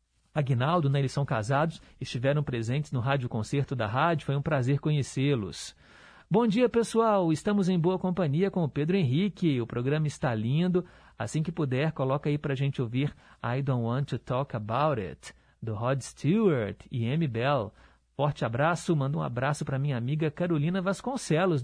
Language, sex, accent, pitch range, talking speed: Portuguese, male, Brazilian, 130-175 Hz, 175 wpm